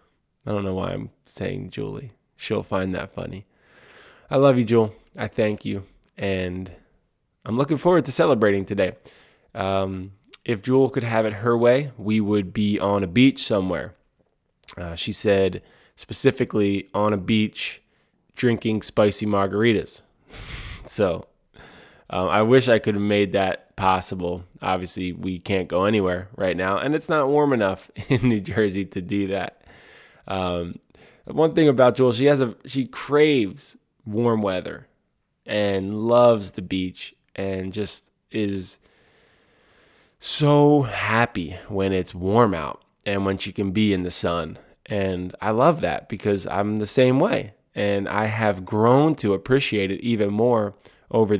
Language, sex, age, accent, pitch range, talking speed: English, male, 20-39, American, 95-120 Hz, 150 wpm